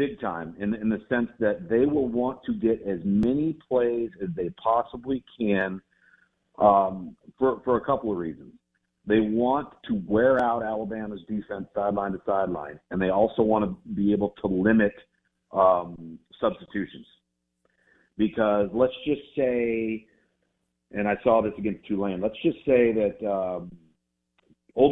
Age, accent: 50-69, American